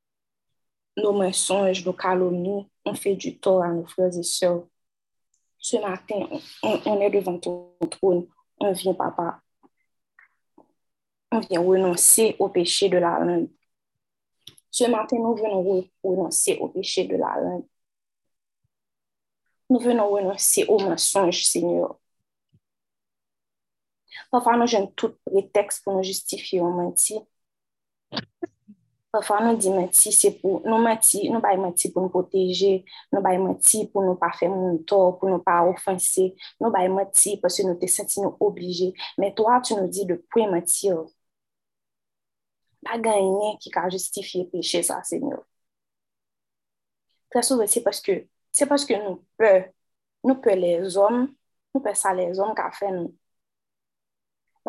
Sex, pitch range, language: female, 185-220 Hz, French